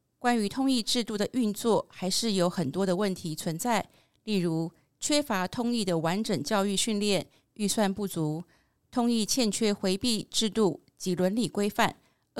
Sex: female